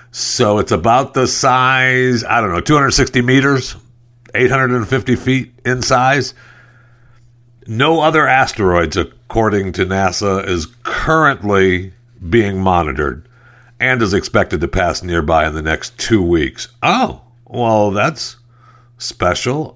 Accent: American